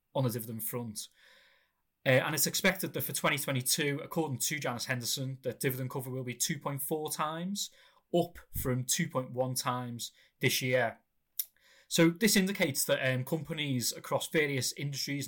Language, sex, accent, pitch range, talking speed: English, male, British, 130-155 Hz, 145 wpm